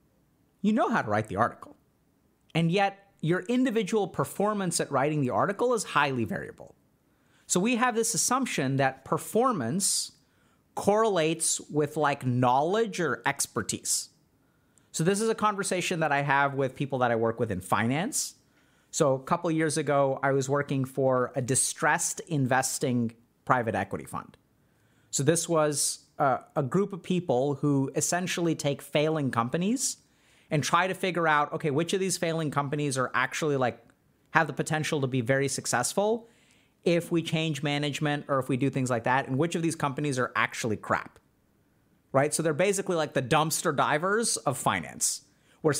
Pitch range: 140-180 Hz